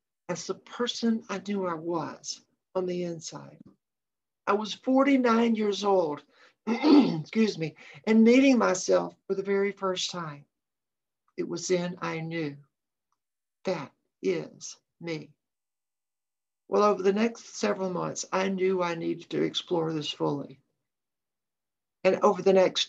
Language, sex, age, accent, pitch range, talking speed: English, male, 60-79, American, 170-205 Hz, 135 wpm